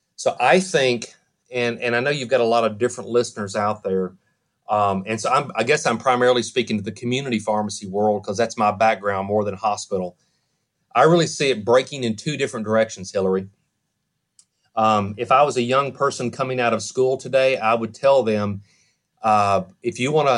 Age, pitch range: 40-59, 110-130 Hz